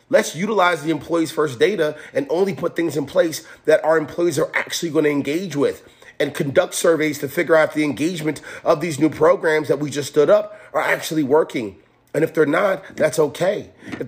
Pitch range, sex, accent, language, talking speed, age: 125-155 Hz, male, American, English, 205 wpm, 30-49